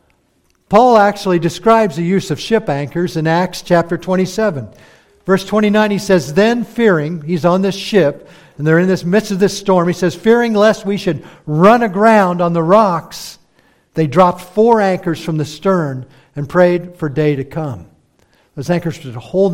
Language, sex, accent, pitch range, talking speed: English, male, American, 145-190 Hz, 180 wpm